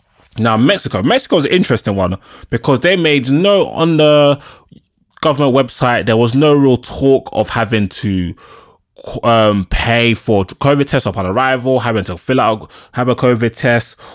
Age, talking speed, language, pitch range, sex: 20-39, 160 wpm, English, 95-125 Hz, male